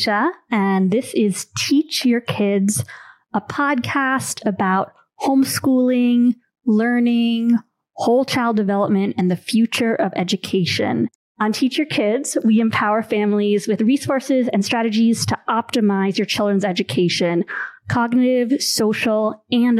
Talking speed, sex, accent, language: 115 wpm, female, American, English